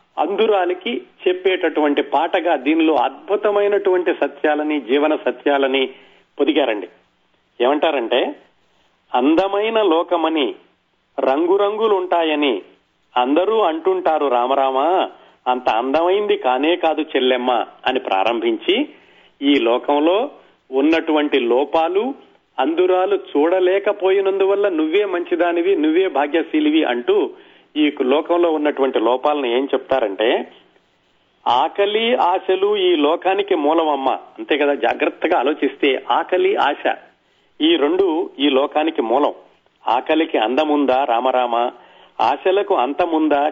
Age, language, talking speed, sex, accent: 40-59, Telugu, 85 wpm, male, native